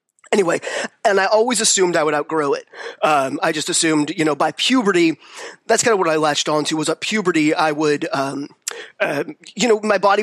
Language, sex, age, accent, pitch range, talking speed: English, male, 20-39, American, 150-195 Hz, 205 wpm